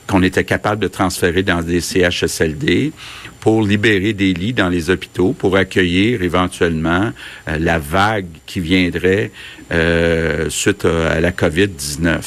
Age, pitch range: 50-69, 90-105 Hz